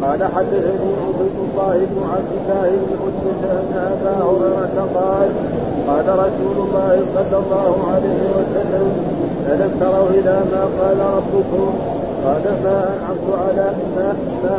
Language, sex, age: Arabic, male, 50-69